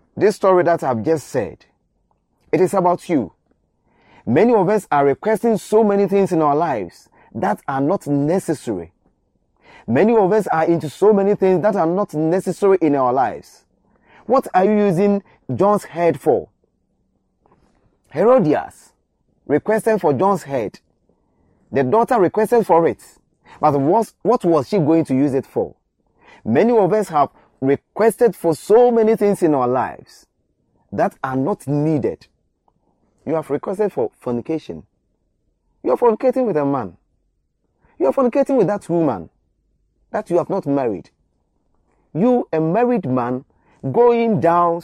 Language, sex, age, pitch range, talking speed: English, male, 30-49, 145-215 Hz, 145 wpm